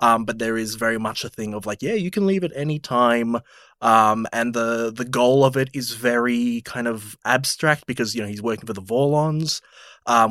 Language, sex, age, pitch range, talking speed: English, male, 20-39, 115-145 Hz, 220 wpm